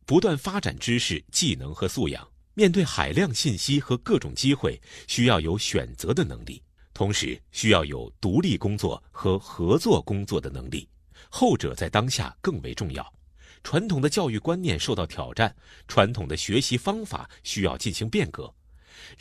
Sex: male